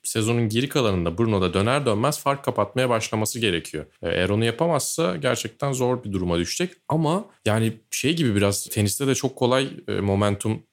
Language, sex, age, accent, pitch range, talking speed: Turkish, male, 30-49, native, 95-125 Hz, 160 wpm